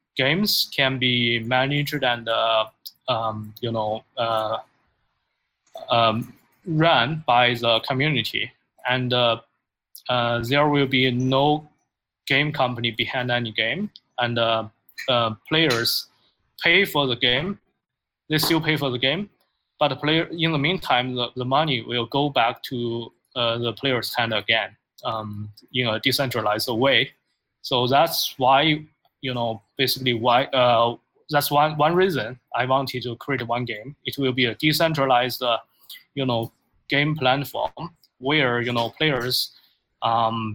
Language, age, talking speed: English, 20-39, 150 wpm